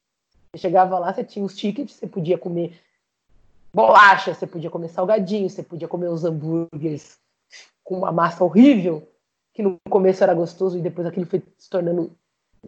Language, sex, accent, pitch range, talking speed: Portuguese, female, Brazilian, 175-235 Hz, 160 wpm